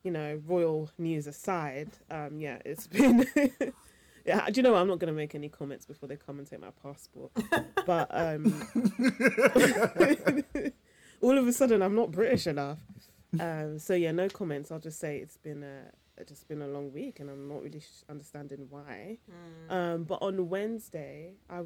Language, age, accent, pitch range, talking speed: English, 20-39, British, 150-195 Hz, 185 wpm